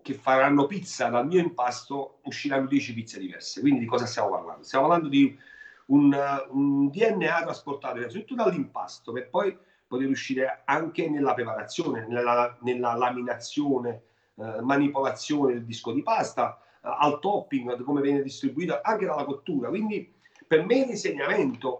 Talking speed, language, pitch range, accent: 145 wpm, Italian, 125-160 Hz, native